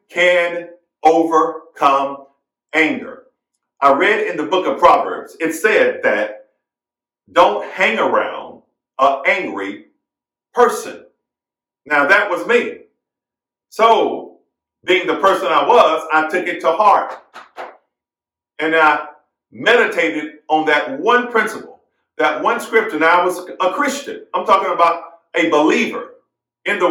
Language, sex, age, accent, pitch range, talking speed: English, male, 50-69, American, 155-235 Hz, 125 wpm